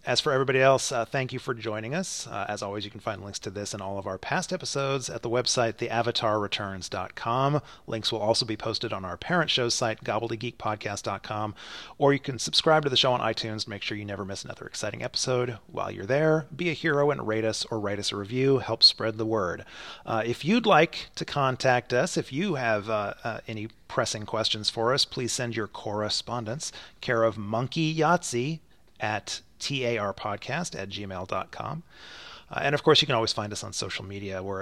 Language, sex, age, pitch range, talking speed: English, male, 30-49, 105-135 Hz, 200 wpm